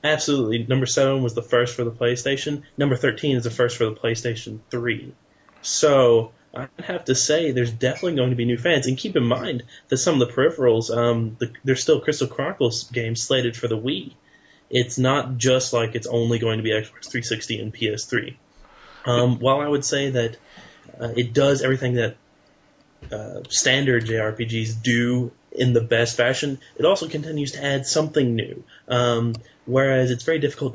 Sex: male